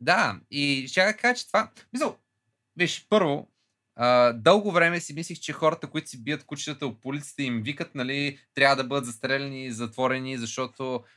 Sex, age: male, 20-39